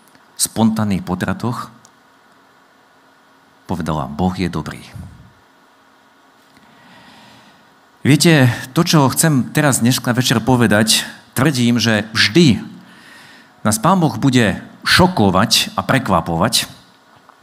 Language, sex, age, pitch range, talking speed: Slovak, male, 50-69, 120-160 Hz, 85 wpm